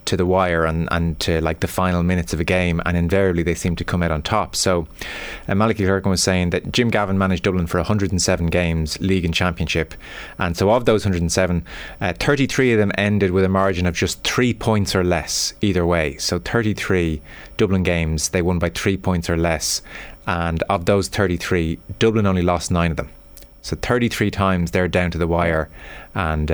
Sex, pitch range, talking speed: male, 85-100 Hz, 205 wpm